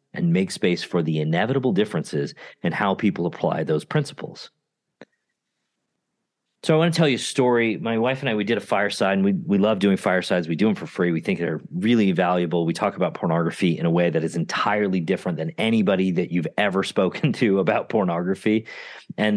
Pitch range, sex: 85-135 Hz, male